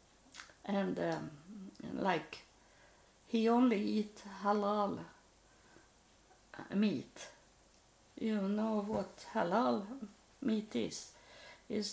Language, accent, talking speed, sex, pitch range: English, Swedish, 75 wpm, female, 195-235 Hz